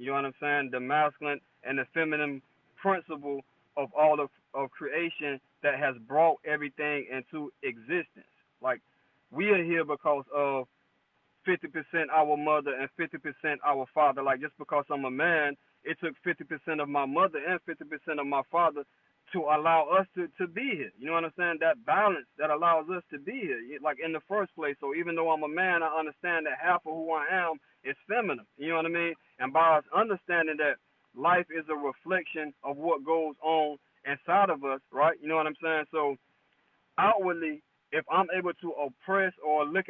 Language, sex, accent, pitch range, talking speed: English, male, American, 145-170 Hz, 195 wpm